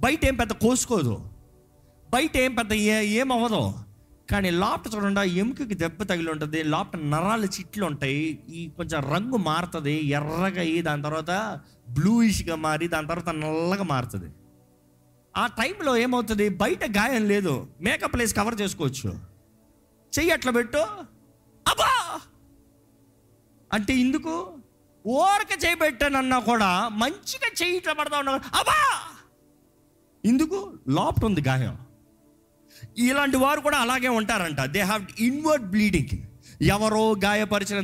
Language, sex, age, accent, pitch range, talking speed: Telugu, male, 30-49, native, 145-230 Hz, 115 wpm